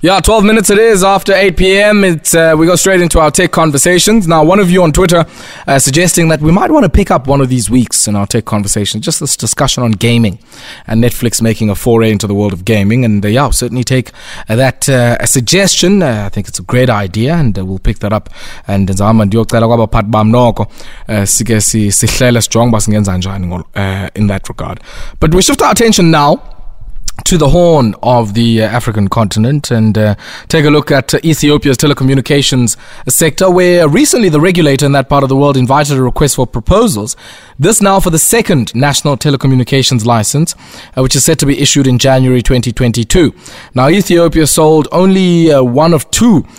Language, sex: English, male